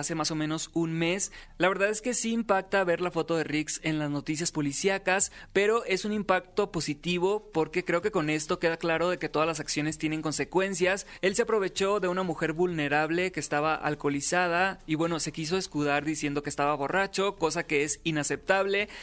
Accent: Mexican